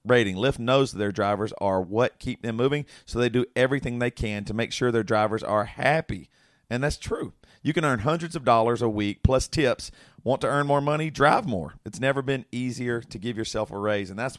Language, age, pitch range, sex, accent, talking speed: English, 40-59, 105-135 Hz, male, American, 230 wpm